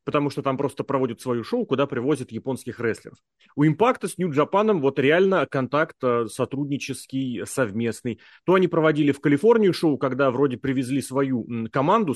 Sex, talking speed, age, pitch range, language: male, 155 wpm, 30-49, 125-170 Hz, Russian